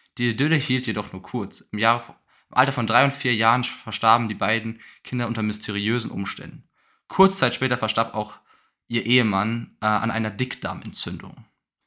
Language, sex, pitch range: German, male, 110-130 Hz